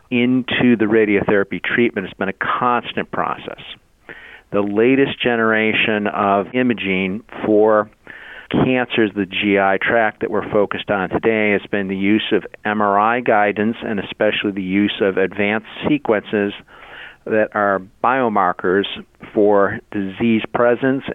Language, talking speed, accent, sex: English, 125 wpm, American, male